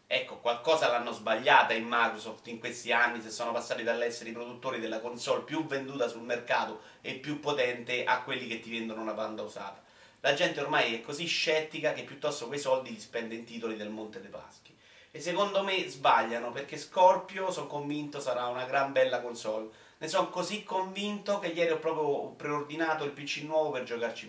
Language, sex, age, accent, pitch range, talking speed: Italian, male, 30-49, native, 110-145 Hz, 190 wpm